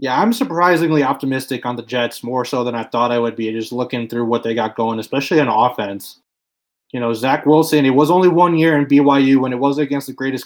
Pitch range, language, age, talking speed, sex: 110-125 Hz, English, 20-39, 240 wpm, male